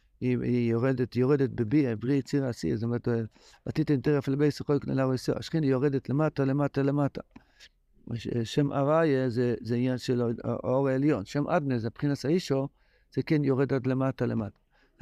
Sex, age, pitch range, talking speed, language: male, 60-79, 130-170 Hz, 160 wpm, Hebrew